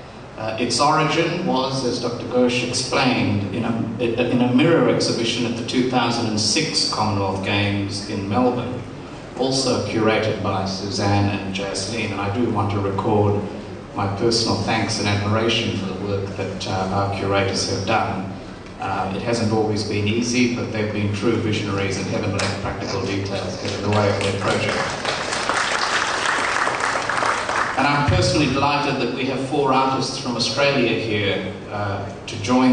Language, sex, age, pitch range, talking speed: English, male, 30-49, 100-125 Hz, 155 wpm